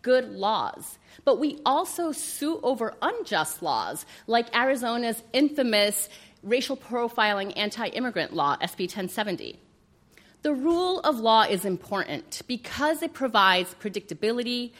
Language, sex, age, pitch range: English, female, 30-49, 200-270 Hz